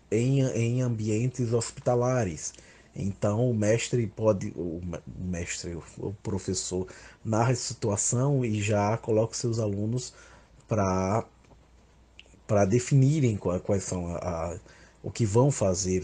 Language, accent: Portuguese, Brazilian